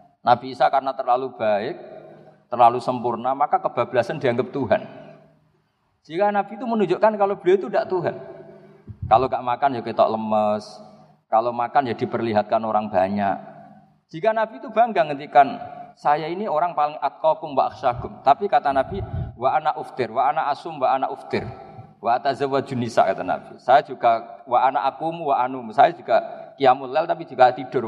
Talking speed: 145 wpm